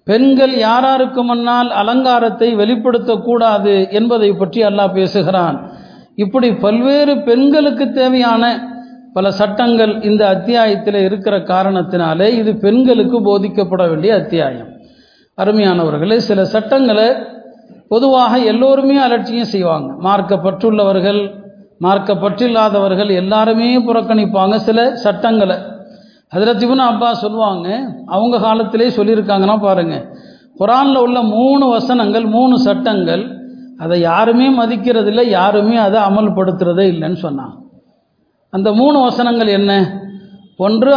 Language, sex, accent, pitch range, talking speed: Tamil, male, native, 195-240 Hz, 95 wpm